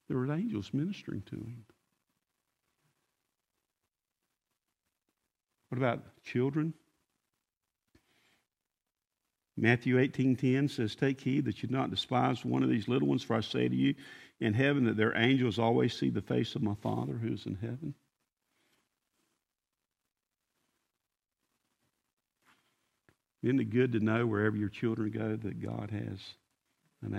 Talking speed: 130 wpm